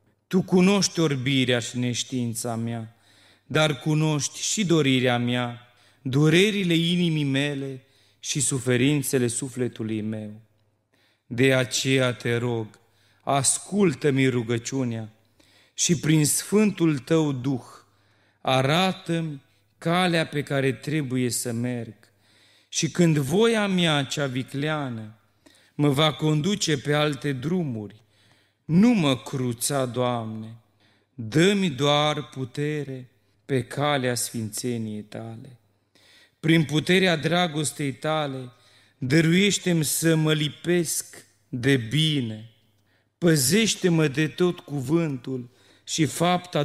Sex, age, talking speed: male, 40-59, 95 wpm